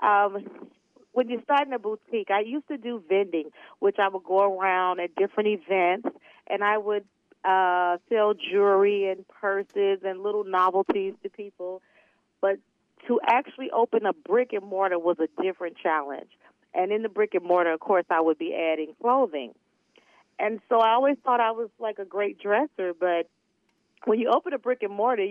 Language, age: English, 40-59